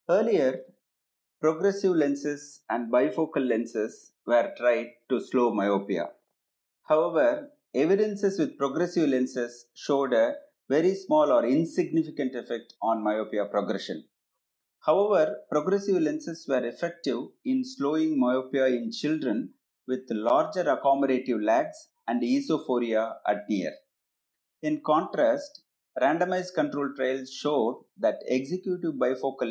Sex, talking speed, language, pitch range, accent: male, 110 wpm, English, 120-185 Hz, Indian